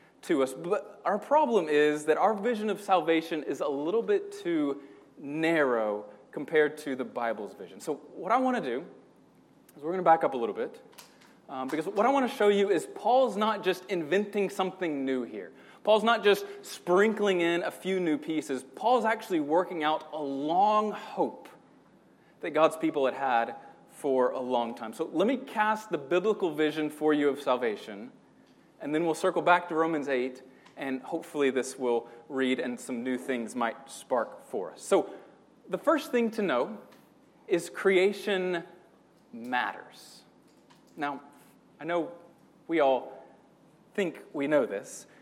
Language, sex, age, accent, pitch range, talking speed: English, male, 20-39, American, 145-215 Hz, 170 wpm